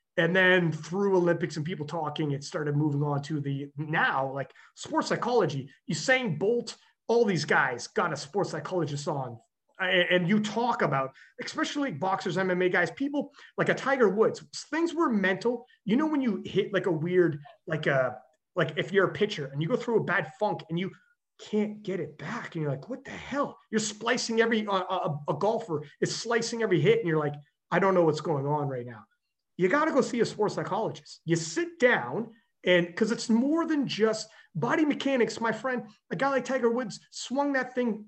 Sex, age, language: male, 30-49, English